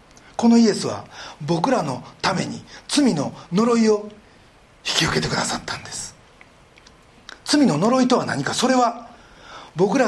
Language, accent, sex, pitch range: Japanese, native, male, 195-285 Hz